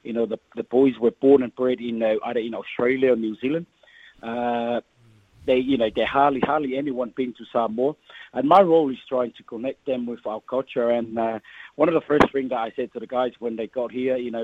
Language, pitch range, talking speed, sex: English, 120-135 Hz, 240 wpm, male